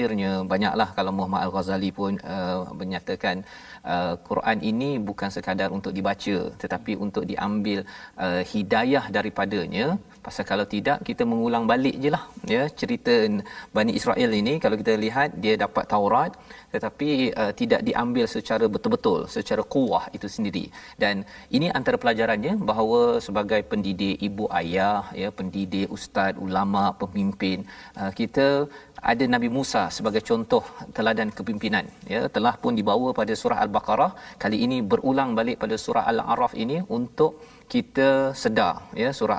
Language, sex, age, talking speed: Malayalam, male, 40-59, 140 wpm